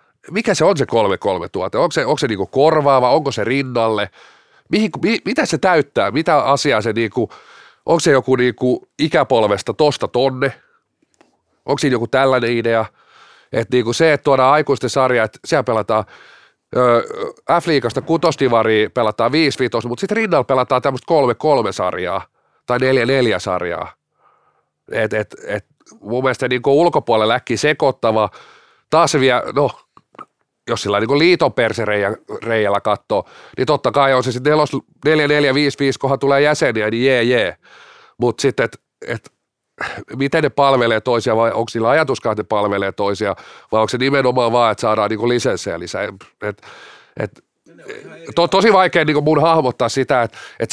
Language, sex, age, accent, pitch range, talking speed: Finnish, male, 30-49, native, 115-150 Hz, 155 wpm